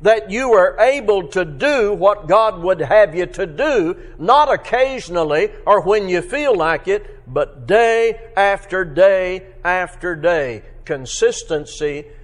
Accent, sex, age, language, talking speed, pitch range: American, male, 60-79, English, 135 wpm, 150-230 Hz